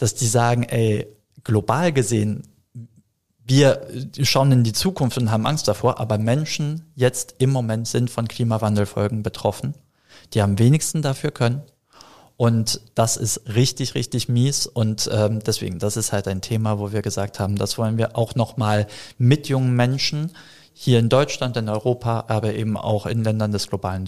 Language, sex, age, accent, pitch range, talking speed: German, male, 40-59, German, 105-120 Hz, 165 wpm